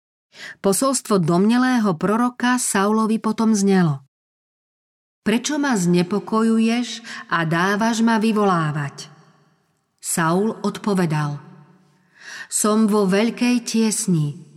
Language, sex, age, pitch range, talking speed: Slovak, female, 40-59, 175-220 Hz, 80 wpm